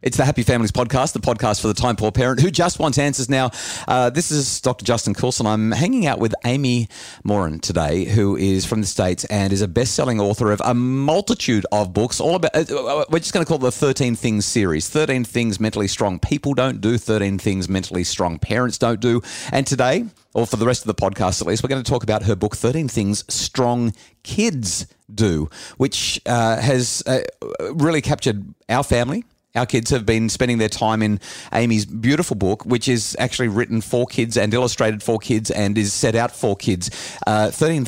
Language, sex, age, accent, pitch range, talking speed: English, male, 30-49, Australian, 105-130 Hz, 210 wpm